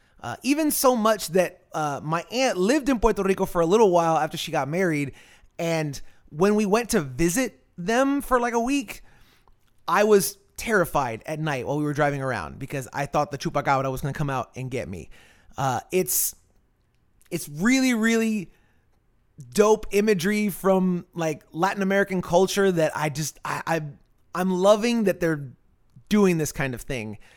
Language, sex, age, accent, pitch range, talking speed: English, male, 30-49, American, 145-205 Hz, 175 wpm